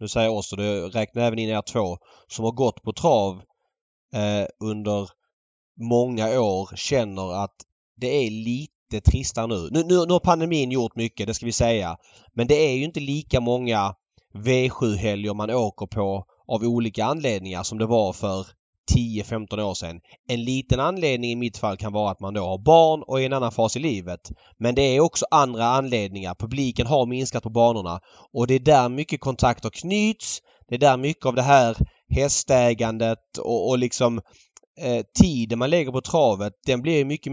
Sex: male